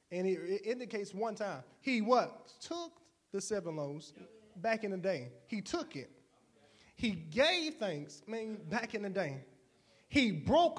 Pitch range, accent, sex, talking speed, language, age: 190-260 Hz, American, male, 150 wpm, English, 20-39